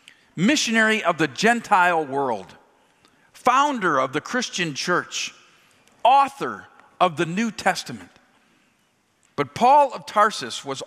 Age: 50-69